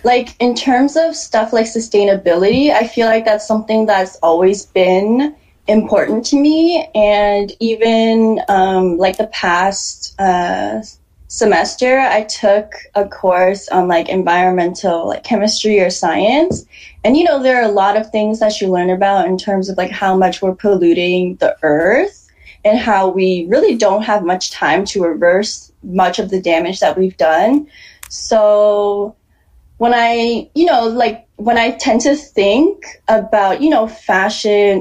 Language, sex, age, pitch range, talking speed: English, female, 10-29, 185-230 Hz, 160 wpm